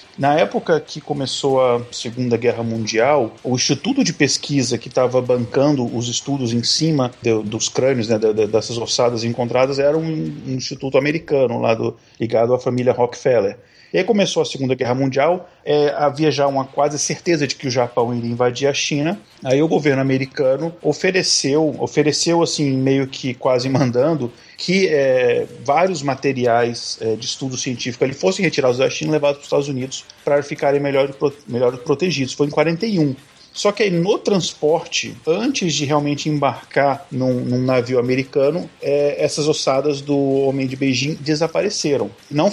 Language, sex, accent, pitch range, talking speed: Portuguese, male, Brazilian, 130-165 Hz, 155 wpm